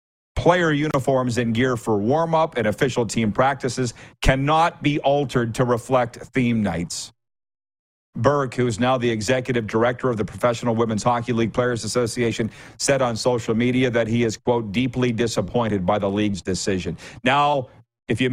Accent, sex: American, male